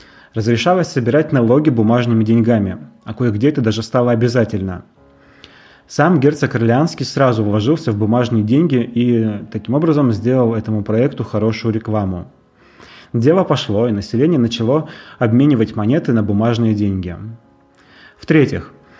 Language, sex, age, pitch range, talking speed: Russian, male, 30-49, 110-130 Hz, 120 wpm